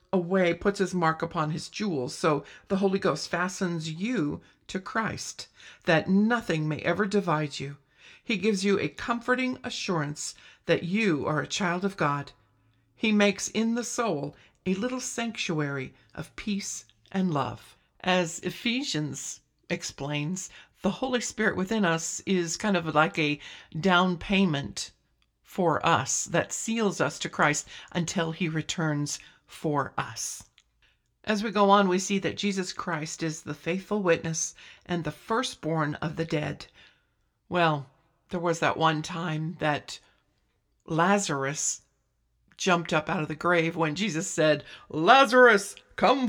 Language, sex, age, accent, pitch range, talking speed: English, female, 50-69, American, 150-195 Hz, 145 wpm